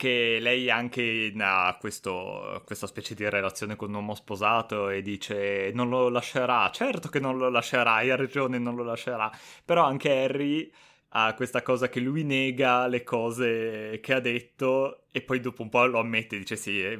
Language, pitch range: Italian, 100-125 Hz